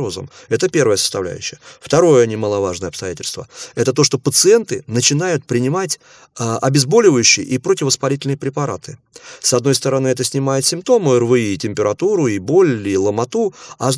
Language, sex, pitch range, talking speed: Russian, male, 115-150 Hz, 140 wpm